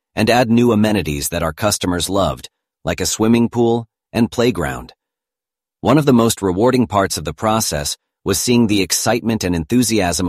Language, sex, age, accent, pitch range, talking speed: English, male, 40-59, American, 90-115 Hz, 170 wpm